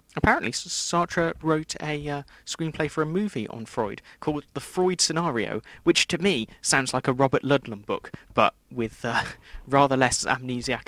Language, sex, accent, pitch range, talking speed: English, male, British, 110-150 Hz, 165 wpm